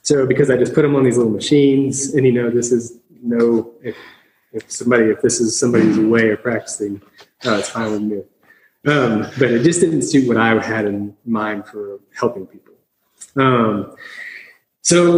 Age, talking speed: 30-49, 185 wpm